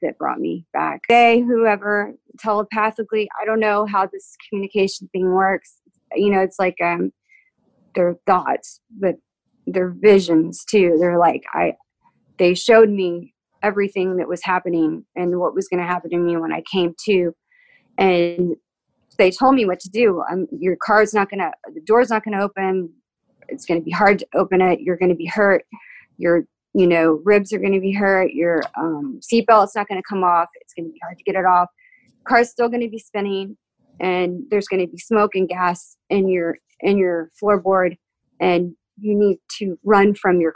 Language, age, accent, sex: English, 30-49, American, female